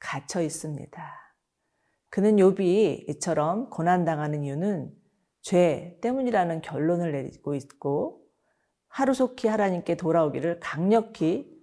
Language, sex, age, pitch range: Korean, female, 40-59, 160-205 Hz